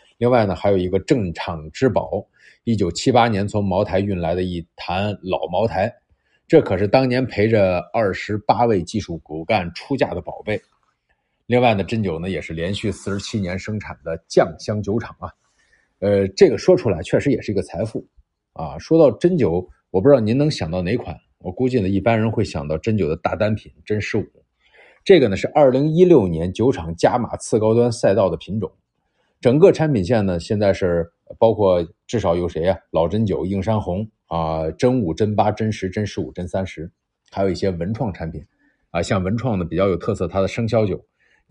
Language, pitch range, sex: Chinese, 90-120 Hz, male